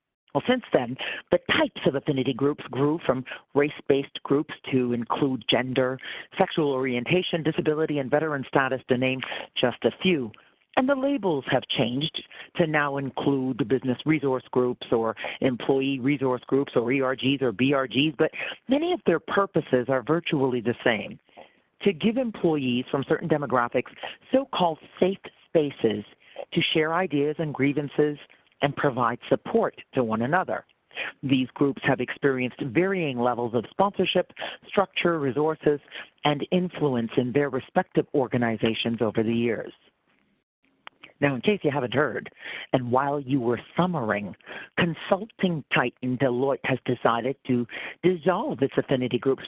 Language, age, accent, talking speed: English, 50-69, American, 140 wpm